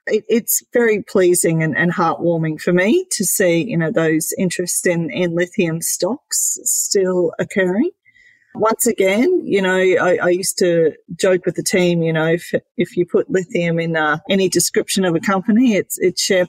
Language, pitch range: English, 165-200 Hz